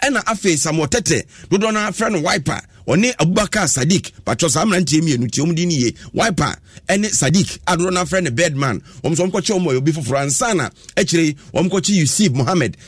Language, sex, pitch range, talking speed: English, male, 145-190 Hz, 160 wpm